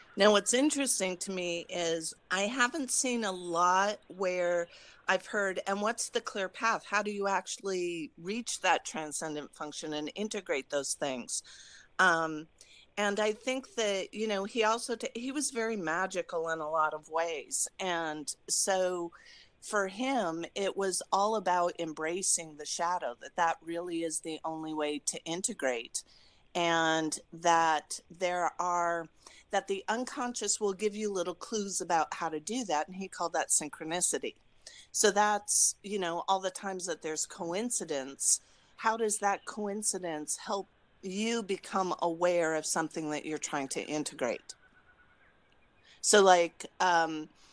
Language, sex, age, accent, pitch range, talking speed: English, female, 40-59, American, 160-205 Hz, 150 wpm